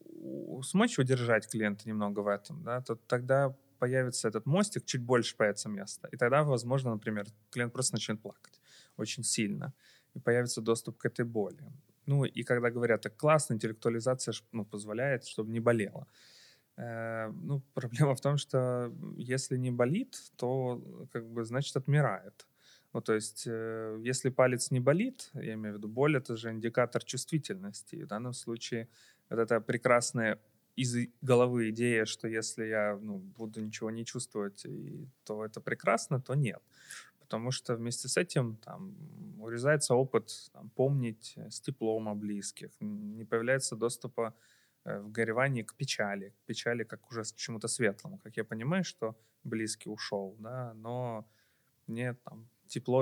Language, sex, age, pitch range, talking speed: Ukrainian, male, 20-39, 110-130 Hz, 155 wpm